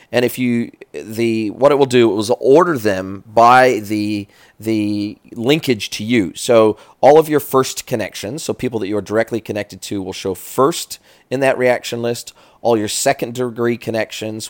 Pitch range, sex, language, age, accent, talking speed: 100-120 Hz, male, English, 30-49, American, 180 wpm